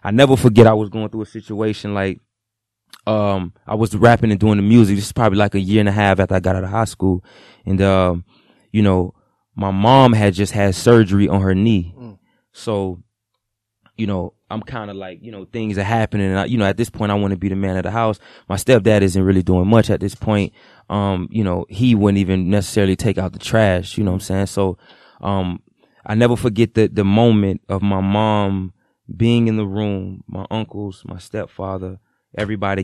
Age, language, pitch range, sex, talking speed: 20-39, English, 95-110 Hz, male, 220 wpm